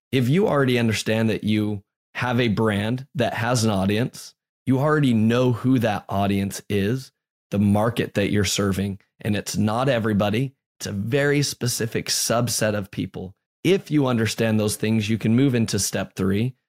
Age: 20-39